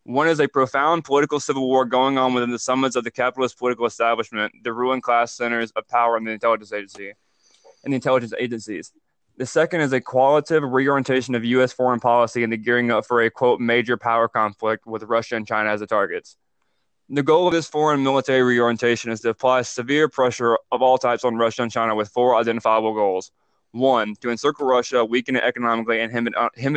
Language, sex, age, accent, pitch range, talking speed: English, male, 20-39, American, 115-135 Hz, 205 wpm